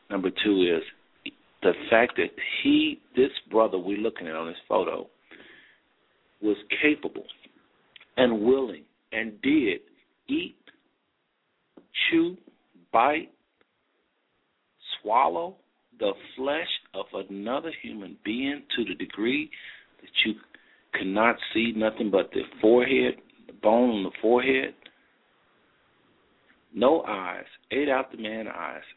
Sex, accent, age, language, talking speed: male, American, 50-69, English, 115 wpm